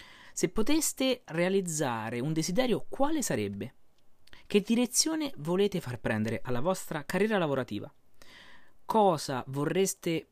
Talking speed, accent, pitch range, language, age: 105 wpm, native, 130-200 Hz, Italian, 30-49